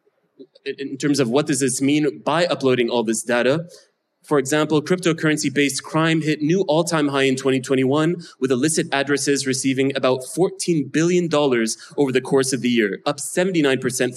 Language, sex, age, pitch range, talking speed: English, male, 20-39, 130-155 Hz, 165 wpm